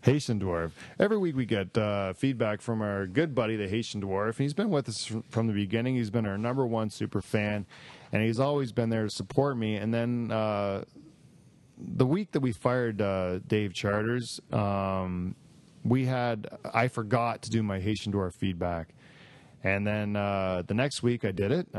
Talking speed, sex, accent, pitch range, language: 185 wpm, male, American, 100-130 Hz, English